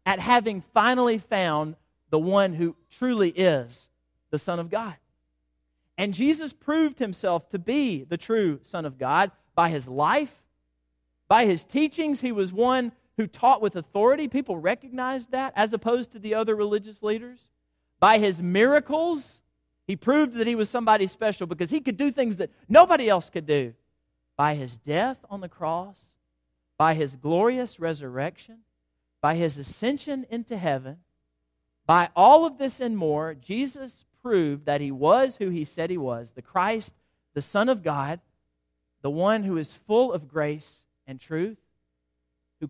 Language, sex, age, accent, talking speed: English, male, 40-59, American, 160 wpm